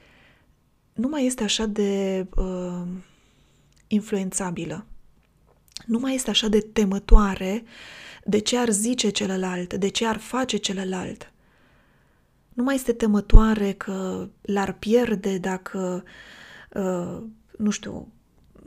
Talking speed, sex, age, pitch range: 110 wpm, female, 20-39, 190-225 Hz